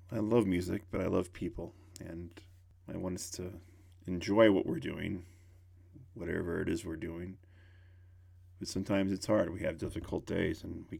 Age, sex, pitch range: 40-59, male, 90-95 Hz